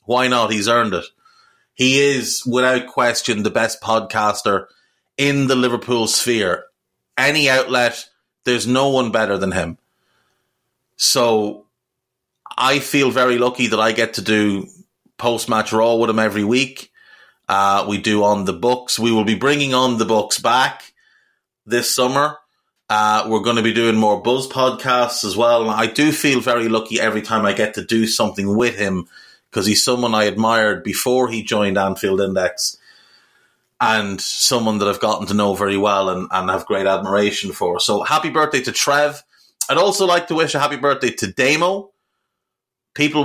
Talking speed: 170 wpm